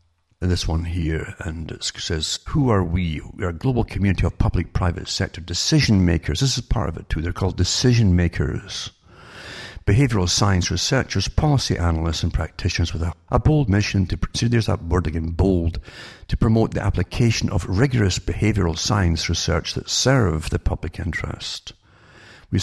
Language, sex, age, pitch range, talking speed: English, male, 60-79, 85-105 Hz, 160 wpm